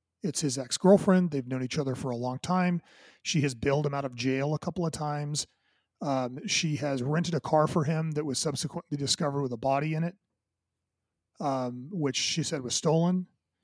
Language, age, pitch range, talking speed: English, 30-49, 130-160 Hz, 200 wpm